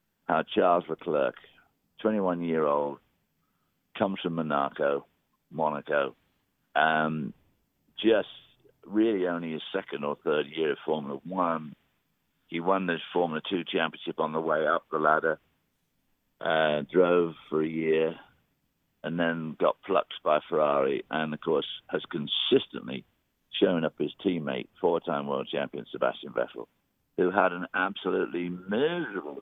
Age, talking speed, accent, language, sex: 50-69, 130 wpm, British, English, male